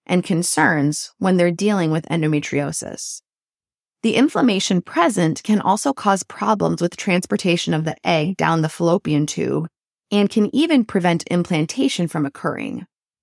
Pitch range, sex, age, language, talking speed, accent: 165-220 Hz, female, 20-39, English, 135 wpm, American